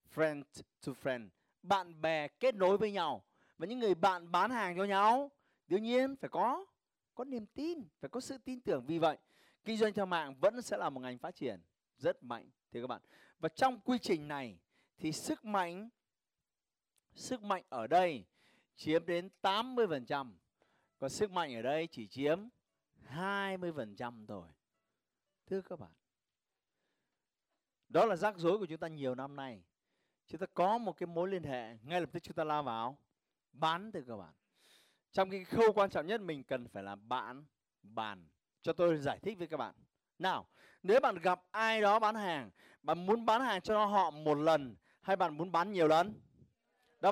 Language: Vietnamese